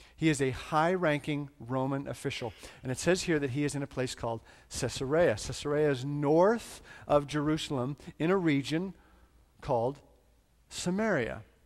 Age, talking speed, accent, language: 50-69, 145 wpm, American, English